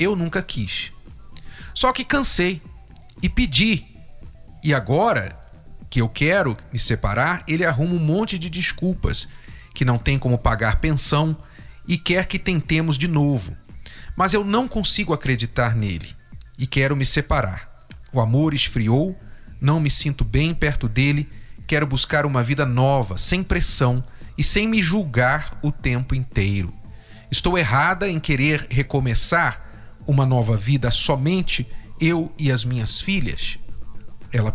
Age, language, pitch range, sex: 40-59, Portuguese, 120-175 Hz, male